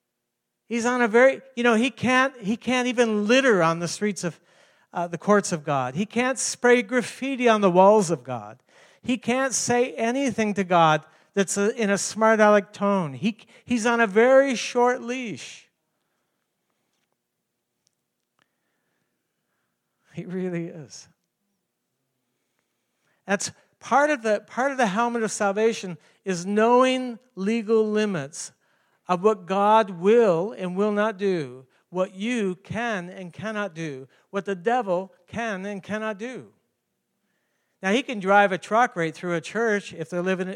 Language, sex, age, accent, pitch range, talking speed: English, male, 60-79, American, 175-230 Hz, 150 wpm